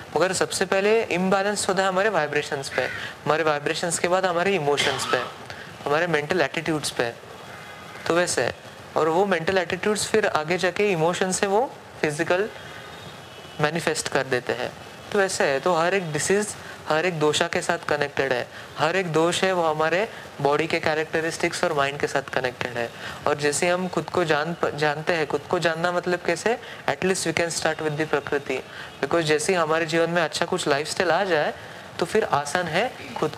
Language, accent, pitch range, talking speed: Hindi, native, 150-190 Hz, 180 wpm